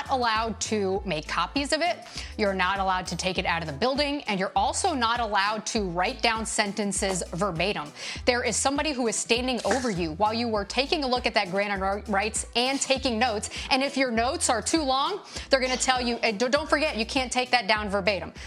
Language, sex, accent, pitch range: English, female, American, 200-255 Hz